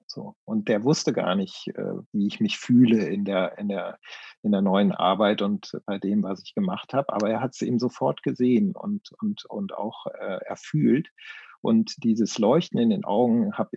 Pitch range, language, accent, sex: 105-140 Hz, German, German, male